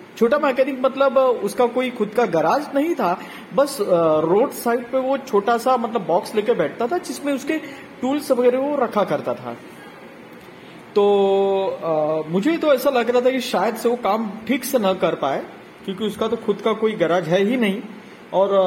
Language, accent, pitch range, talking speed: Hindi, native, 185-265 Hz, 190 wpm